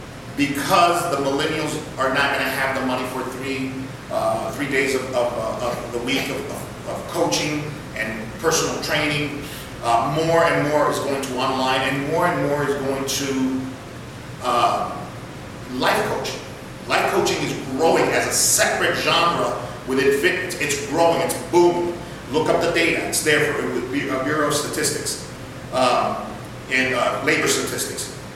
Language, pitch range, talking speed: English, 130-150 Hz, 160 wpm